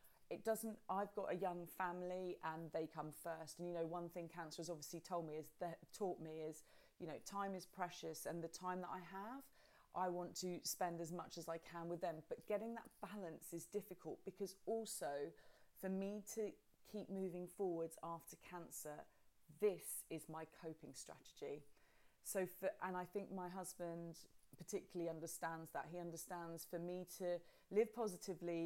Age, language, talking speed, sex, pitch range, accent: 30-49, English, 180 wpm, female, 165-190 Hz, British